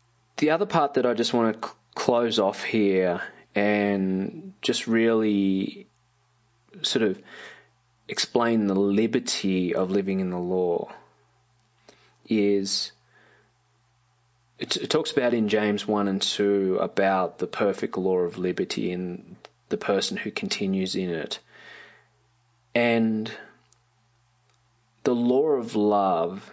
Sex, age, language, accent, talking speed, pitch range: male, 20-39, English, Australian, 120 wpm, 95-120 Hz